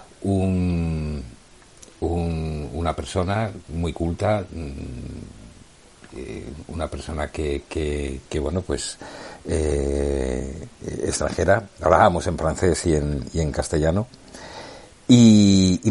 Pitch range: 75-90 Hz